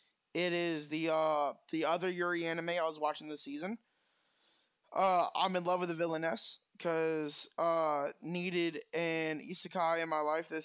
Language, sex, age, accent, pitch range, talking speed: English, male, 20-39, American, 160-180 Hz, 165 wpm